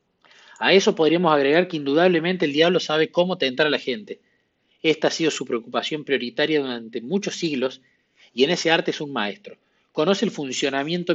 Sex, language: male, Spanish